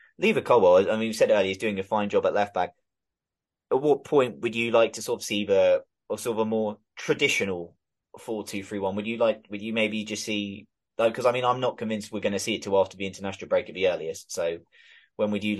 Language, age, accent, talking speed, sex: English, 20-39, British, 245 wpm, male